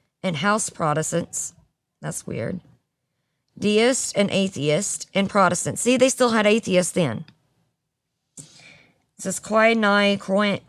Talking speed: 125 wpm